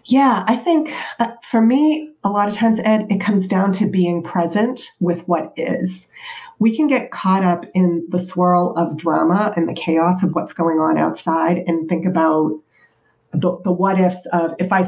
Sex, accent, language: female, American, English